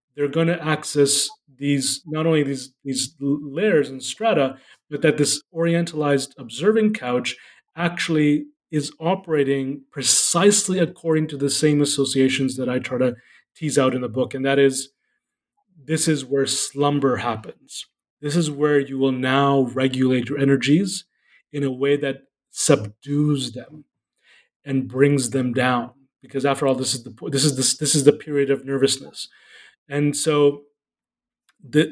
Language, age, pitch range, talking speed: English, 30-49, 135-165 Hz, 150 wpm